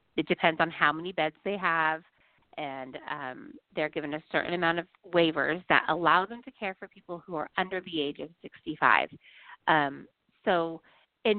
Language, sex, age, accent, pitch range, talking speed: English, female, 30-49, American, 160-215 Hz, 180 wpm